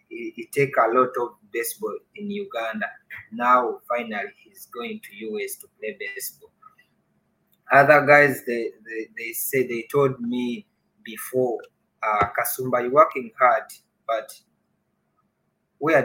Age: 30-49